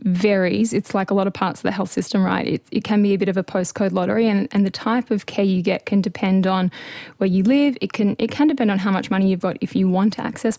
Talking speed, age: 295 wpm, 10-29